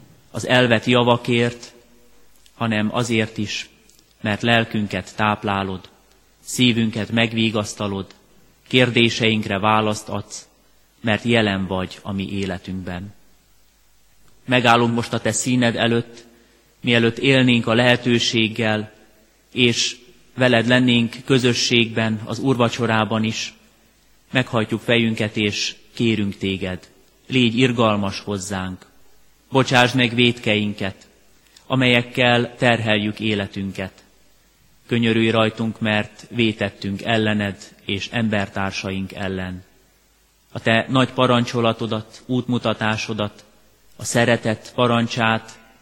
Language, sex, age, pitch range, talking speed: Hungarian, male, 30-49, 100-120 Hz, 90 wpm